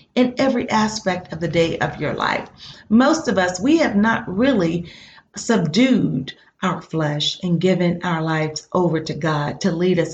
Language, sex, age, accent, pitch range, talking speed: English, female, 40-59, American, 160-220 Hz, 170 wpm